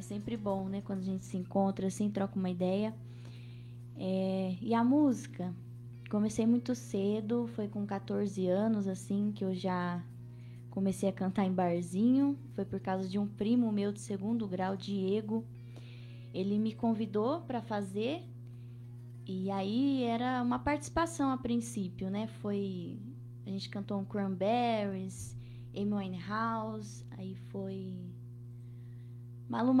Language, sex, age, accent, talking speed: Portuguese, female, 20-39, Brazilian, 135 wpm